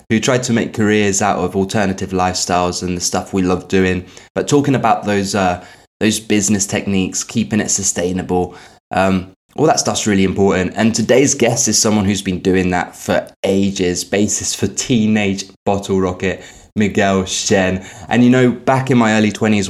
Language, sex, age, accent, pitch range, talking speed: English, male, 20-39, British, 95-105 Hz, 175 wpm